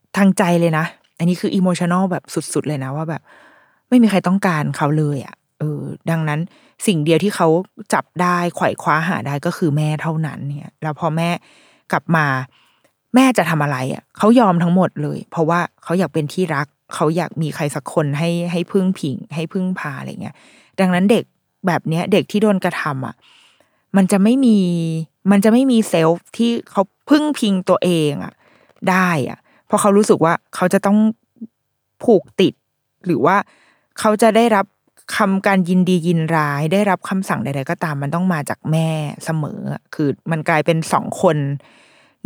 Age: 20-39